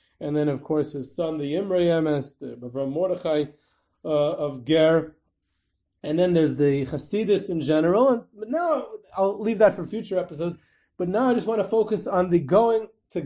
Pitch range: 155-195 Hz